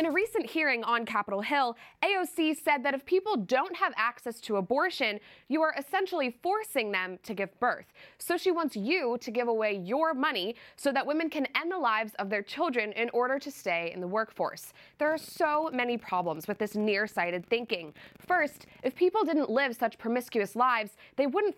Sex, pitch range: female, 225-300 Hz